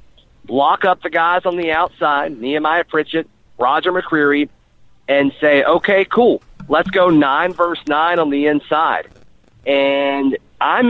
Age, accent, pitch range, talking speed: 40-59, American, 135-170 Hz, 140 wpm